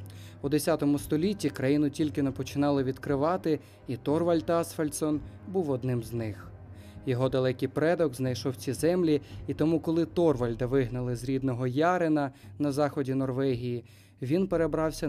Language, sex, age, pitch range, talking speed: Ukrainian, male, 20-39, 120-155 Hz, 135 wpm